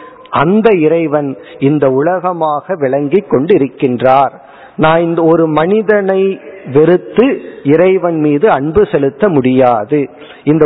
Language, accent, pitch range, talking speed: Tamil, native, 145-180 Hz, 100 wpm